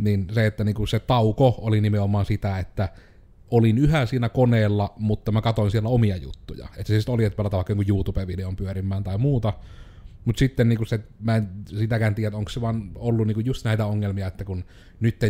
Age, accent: 30-49, native